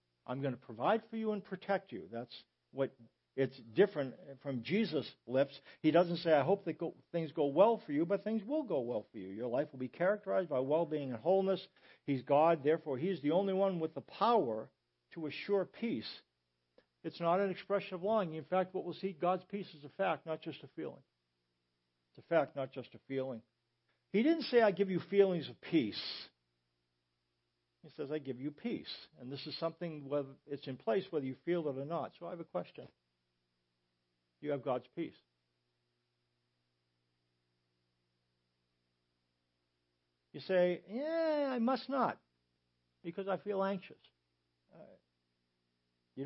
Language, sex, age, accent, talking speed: English, male, 60-79, American, 175 wpm